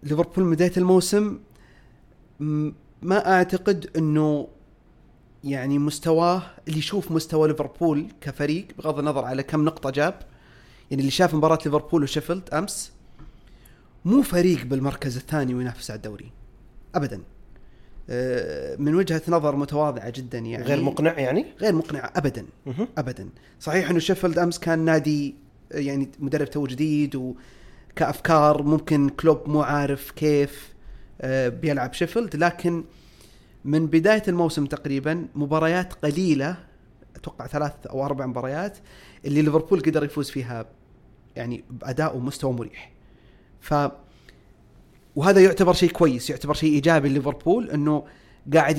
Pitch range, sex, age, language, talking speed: 135-165 Hz, male, 30-49, Arabic, 120 wpm